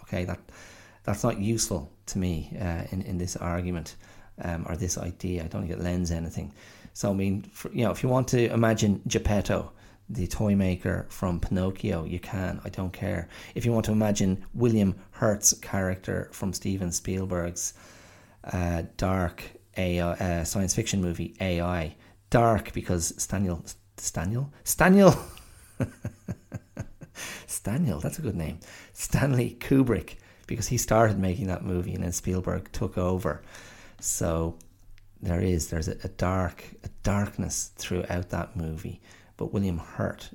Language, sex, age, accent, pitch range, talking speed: English, male, 30-49, Irish, 90-105 Hz, 150 wpm